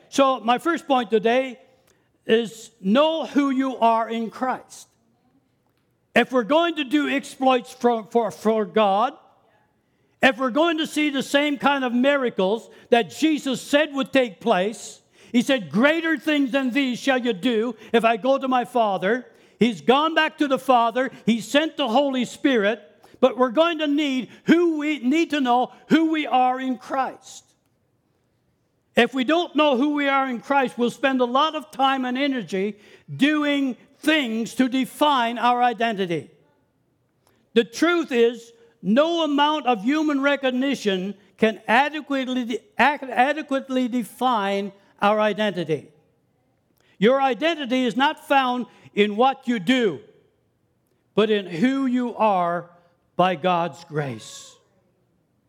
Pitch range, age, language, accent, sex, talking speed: 220-280 Hz, 60-79, English, American, male, 140 wpm